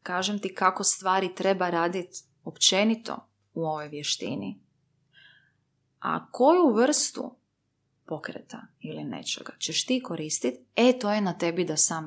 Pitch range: 155-210 Hz